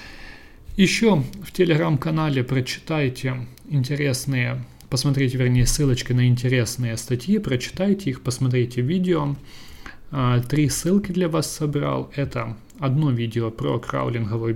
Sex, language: male, Russian